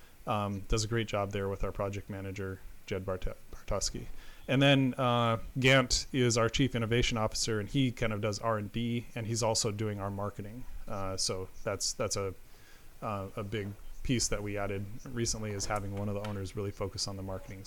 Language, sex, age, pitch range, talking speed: English, male, 30-49, 100-120 Hz, 195 wpm